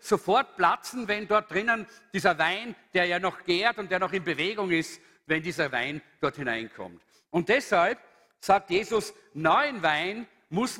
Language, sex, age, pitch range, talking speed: German, male, 50-69, 170-215 Hz, 160 wpm